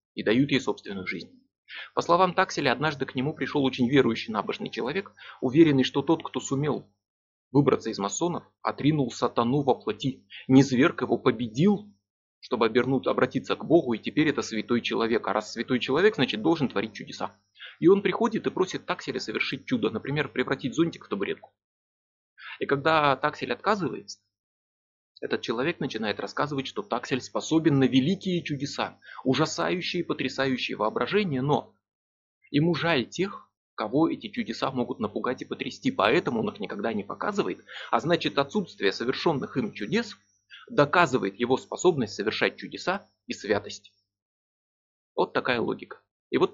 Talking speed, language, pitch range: 145 wpm, Russian, 120-160 Hz